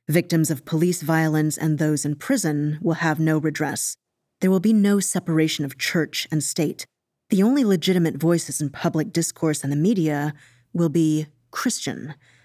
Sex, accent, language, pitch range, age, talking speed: female, American, English, 150-170 Hz, 30-49, 165 wpm